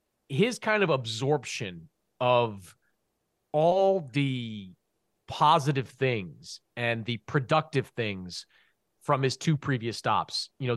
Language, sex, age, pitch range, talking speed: English, male, 30-49, 115-150 Hz, 110 wpm